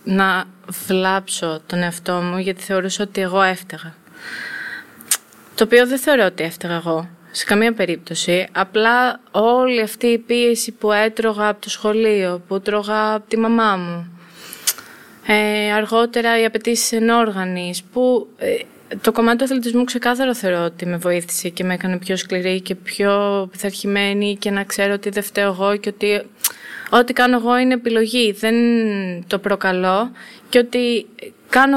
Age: 20-39